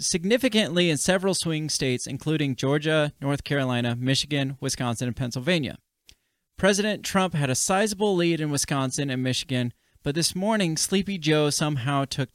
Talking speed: 145 wpm